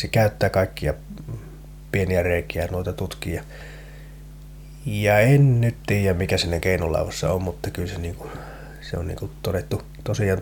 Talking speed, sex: 140 wpm, male